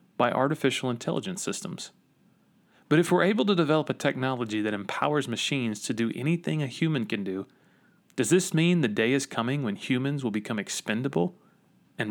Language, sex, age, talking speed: English, male, 30-49, 175 wpm